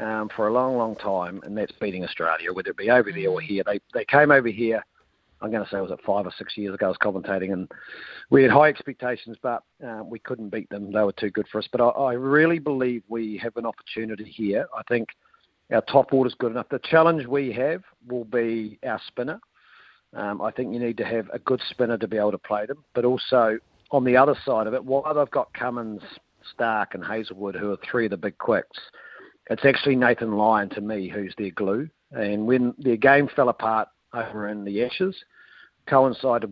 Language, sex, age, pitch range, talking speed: English, male, 40-59, 110-130 Hz, 225 wpm